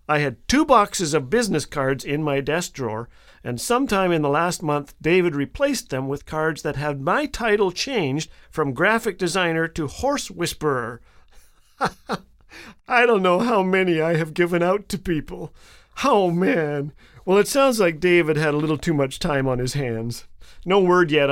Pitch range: 135-180 Hz